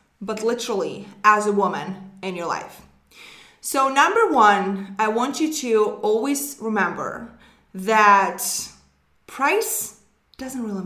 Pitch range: 200-255 Hz